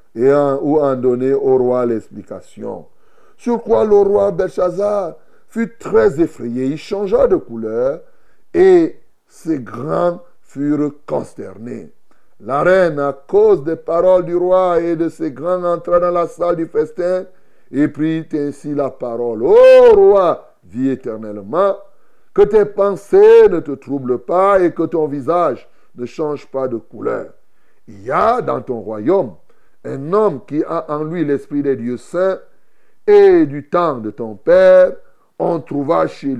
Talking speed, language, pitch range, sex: 155 wpm, French, 140-205 Hz, male